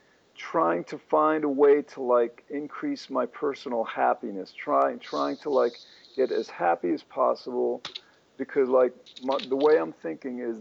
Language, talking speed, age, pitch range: English, 155 wpm, 50-69, 120-150 Hz